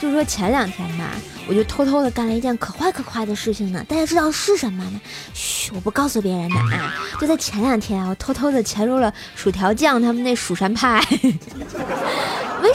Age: 20-39